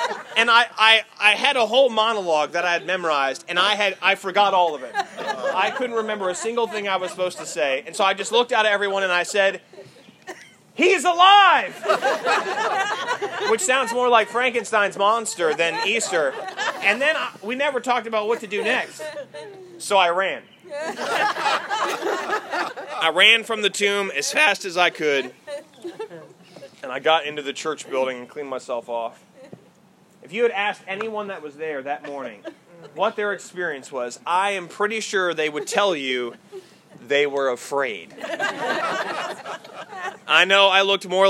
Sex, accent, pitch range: male, American, 160-225 Hz